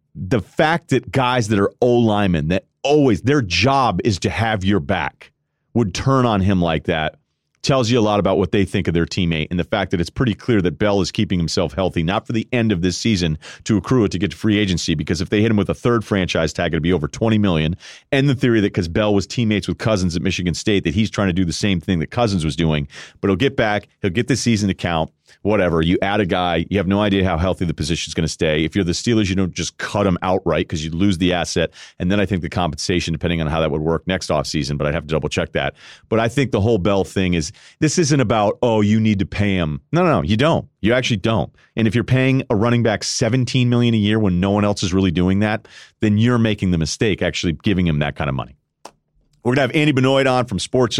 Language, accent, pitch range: English, American, 85-115 Hz